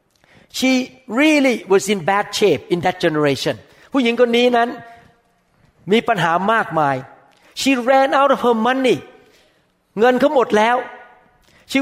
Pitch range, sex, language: 170-235 Hz, male, Thai